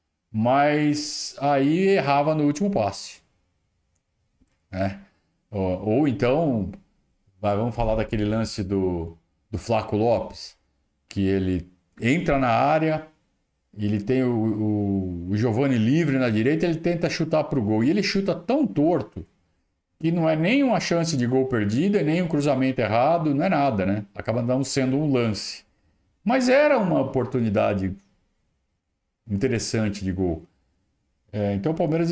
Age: 50-69